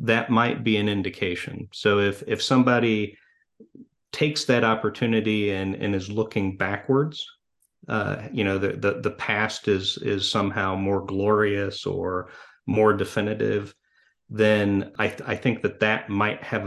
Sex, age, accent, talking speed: male, 40-59, American, 150 wpm